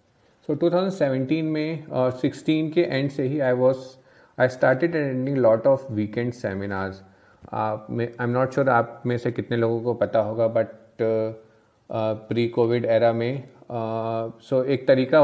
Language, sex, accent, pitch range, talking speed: Hindi, male, native, 110-125 Hz, 170 wpm